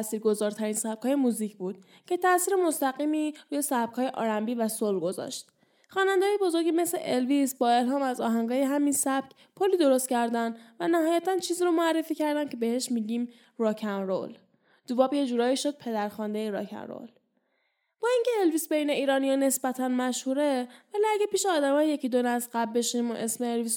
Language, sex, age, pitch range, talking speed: Persian, female, 10-29, 225-290 Hz, 160 wpm